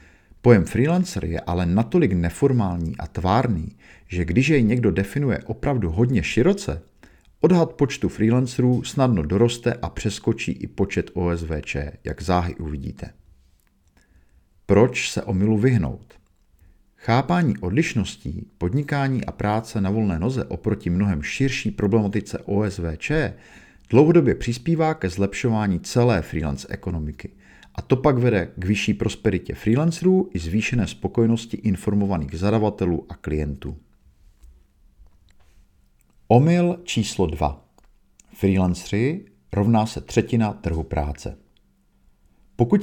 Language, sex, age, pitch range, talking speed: Czech, male, 50-69, 85-120 Hz, 110 wpm